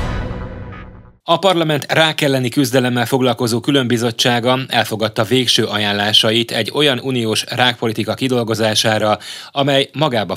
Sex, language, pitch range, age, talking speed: male, Hungarian, 105-125 Hz, 30-49, 100 wpm